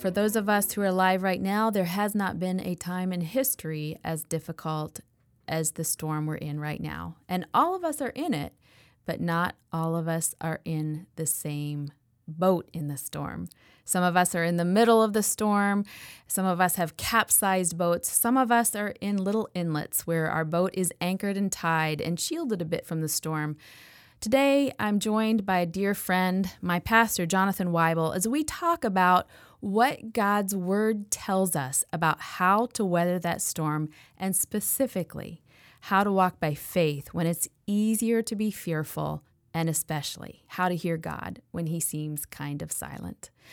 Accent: American